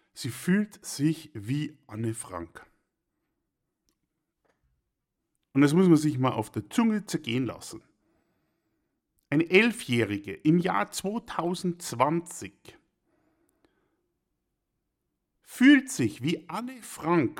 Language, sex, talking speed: German, male, 95 wpm